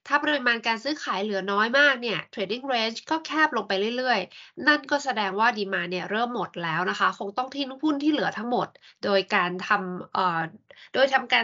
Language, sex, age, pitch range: Thai, female, 20-39, 195-280 Hz